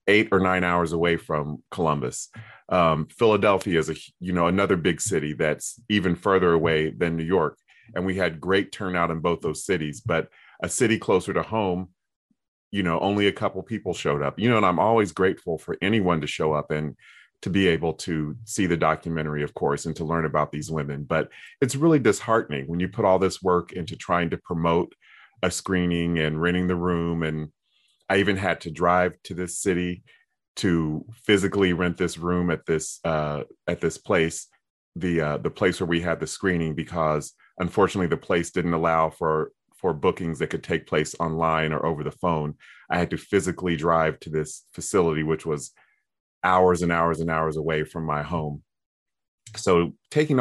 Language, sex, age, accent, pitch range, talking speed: English, male, 30-49, American, 80-95 Hz, 190 wpm